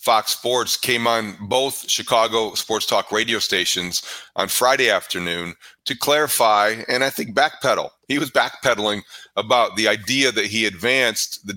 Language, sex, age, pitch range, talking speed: English, male, 40-59, 110-130 Hz, 150 wpm